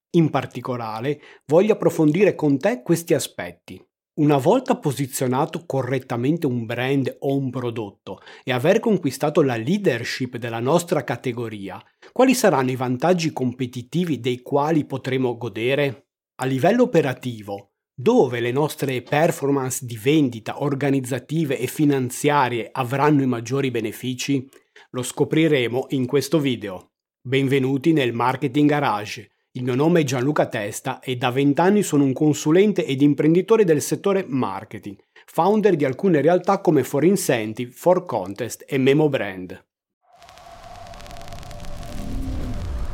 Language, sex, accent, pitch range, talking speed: Italian, male, native, 120-155 Hz, 125 wpm